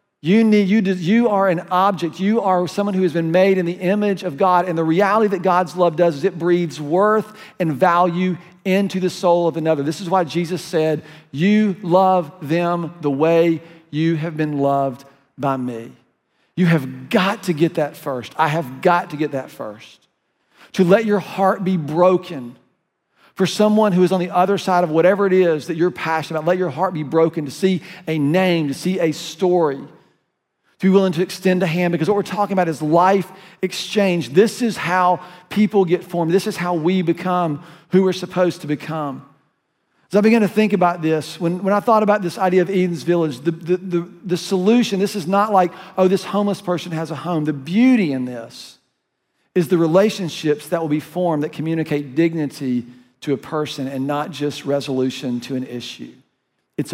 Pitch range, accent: 155-190 Hz, American